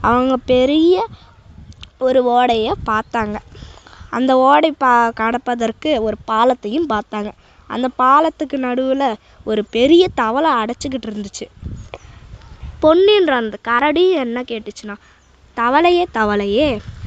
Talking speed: 90 wpm